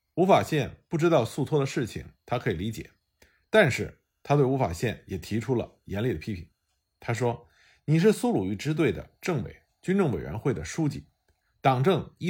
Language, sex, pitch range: Chinese, male, 105-165 Hz